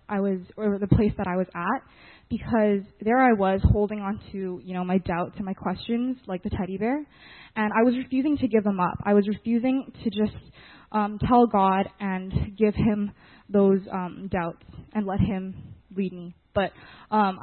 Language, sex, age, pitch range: English, female, 20-39, 190-230 Hz